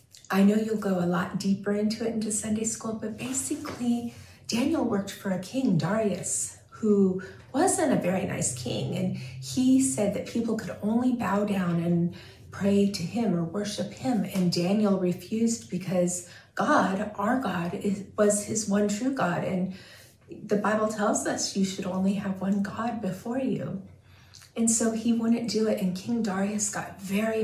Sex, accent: female, American